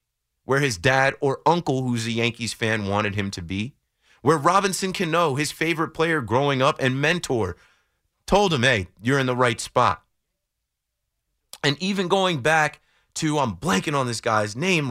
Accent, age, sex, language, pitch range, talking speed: American, 30-49, male, English, 115-175 Hz, 170 wpm